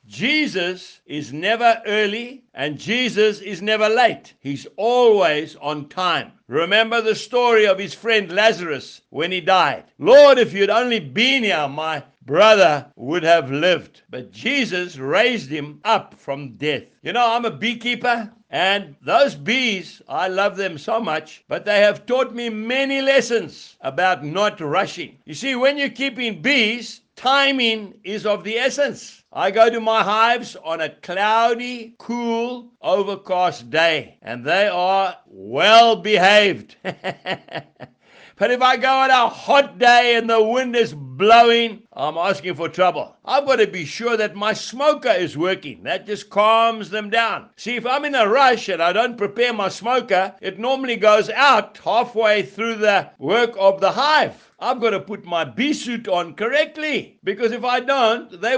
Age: 60-79